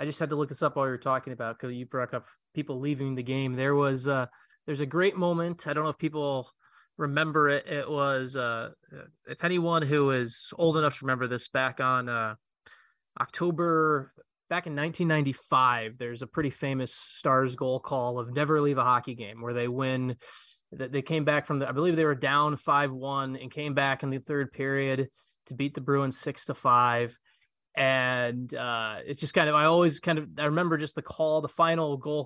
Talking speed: 205 wpm